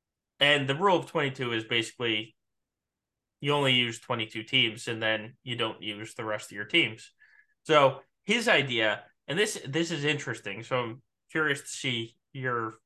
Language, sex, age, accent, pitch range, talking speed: English, male, 20-39, American, 115-155 Hz, 170 wpm